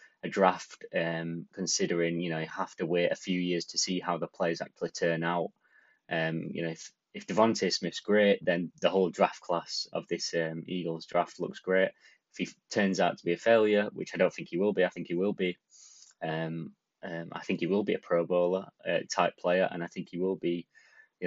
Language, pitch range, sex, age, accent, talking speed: English, 85-95 Hz, male, 20-39, British, 230 wpm